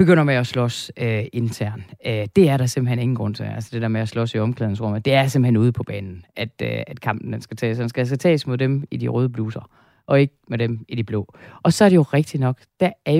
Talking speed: 275 wpm